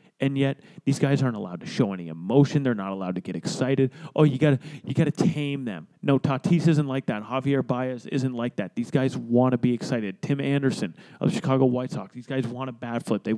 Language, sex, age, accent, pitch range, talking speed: English, male, 30-49, American, 125-155 Hz, 240 wpm